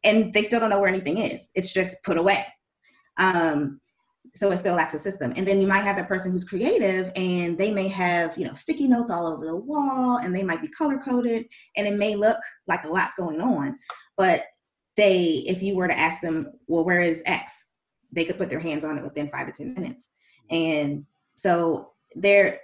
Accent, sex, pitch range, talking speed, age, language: American, female, 175-235 Hz, 215 wpm, 20-39, English